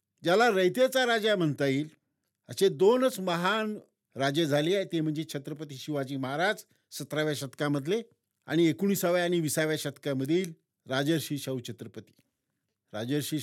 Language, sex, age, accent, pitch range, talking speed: Marathi, male, 50-69, native, 140-190 Hz, 120 wpm